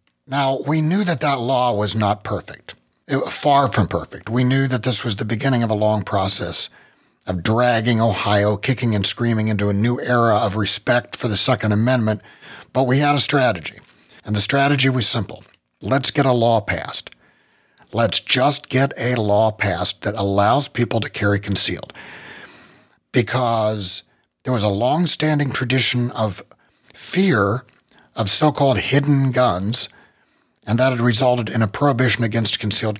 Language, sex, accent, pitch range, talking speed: English, male, American, 105-135 Hz, 160 wpm